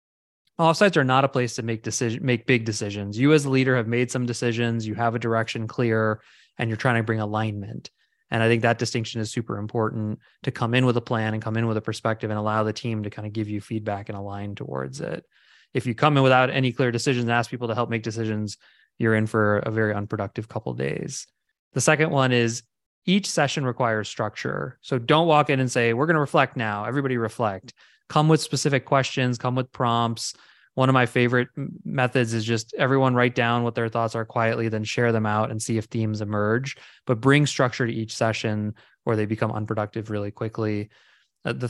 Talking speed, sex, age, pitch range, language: 220 wpm, male, 20-39, 110-130 Hz, English